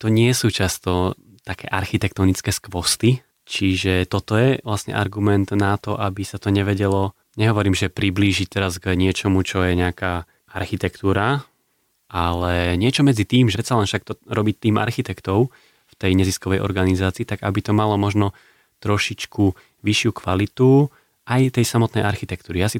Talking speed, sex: 155 wpm, male